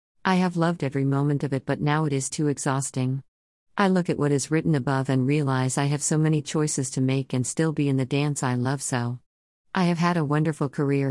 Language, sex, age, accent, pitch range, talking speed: English, female, 50-69, American, 130-155 Hz, 240 wpm